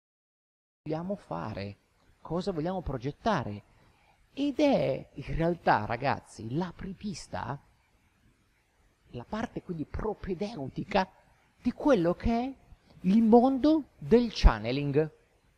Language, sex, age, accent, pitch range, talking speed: Italian, male, 50-69, native, 120-195 Hz, 90 wpm